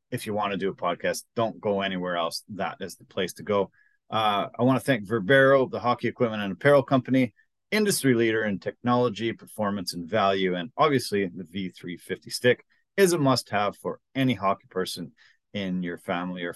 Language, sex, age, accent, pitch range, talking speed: English, male, 30-49, American, 100-135 Hz, 190 wpm